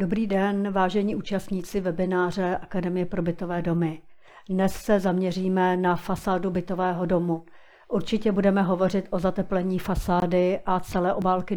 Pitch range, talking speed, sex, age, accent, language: 175-190 Hz, 130 wpm, female, 50-69, native, Czech